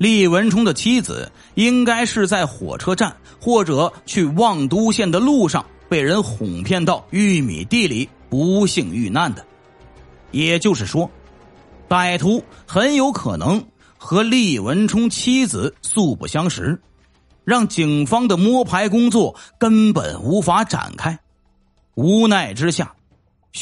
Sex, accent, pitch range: male, native, 150-225 Hz